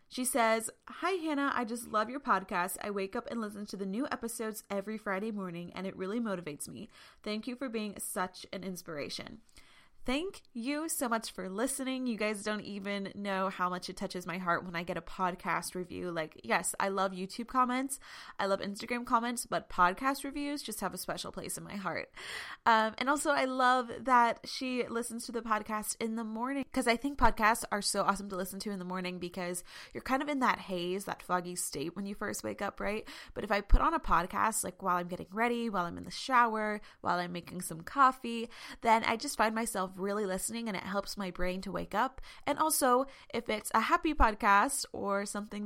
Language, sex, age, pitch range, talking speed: English, female, 20-39, 190-245 Hz, 220 wpm